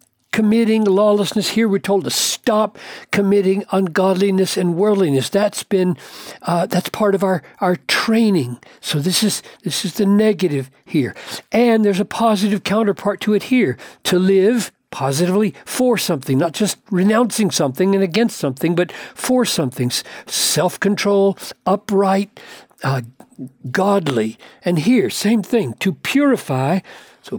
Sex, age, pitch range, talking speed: male, 60-79, 160-215 Hz, 140 wpm